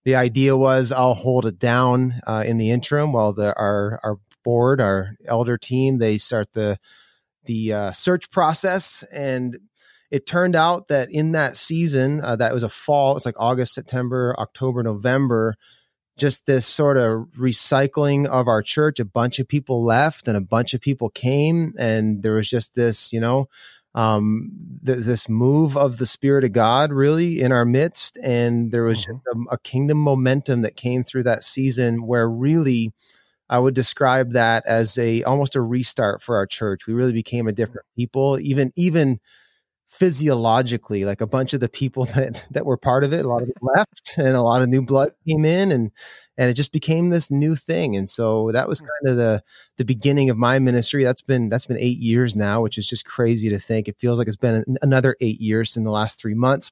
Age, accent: 30-49, American